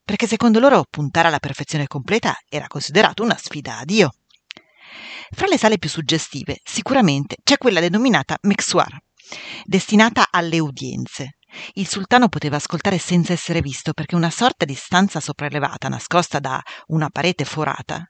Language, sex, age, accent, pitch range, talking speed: Italian, female, 40-59, native, 150-210 Hz, 145 wpm